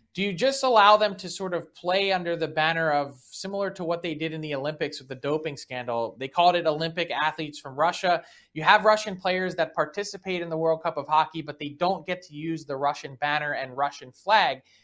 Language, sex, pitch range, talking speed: English, male, 150-190 Hz, 225 wpm